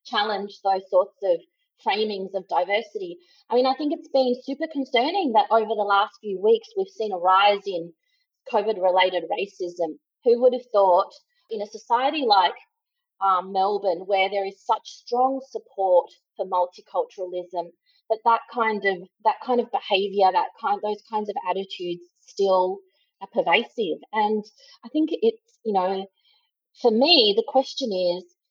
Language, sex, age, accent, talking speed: English, female, 30-49, Australian, 160 wpm